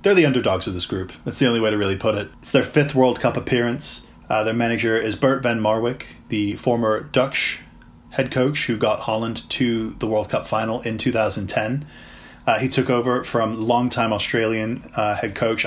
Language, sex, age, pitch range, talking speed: English, male, 20-39, 110-125 Hz, 200 wpm